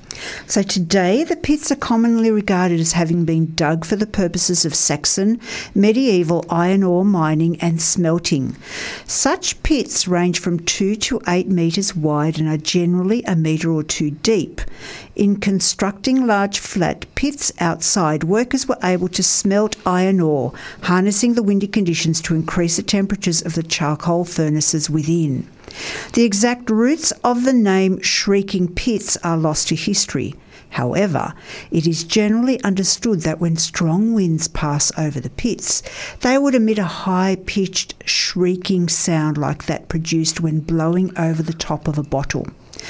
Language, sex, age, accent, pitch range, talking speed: English, female, 60-79, Australian, 165-205 Hz, 150 wpm